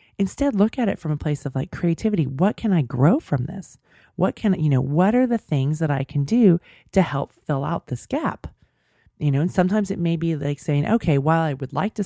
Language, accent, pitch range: English, American, 135-165 Hz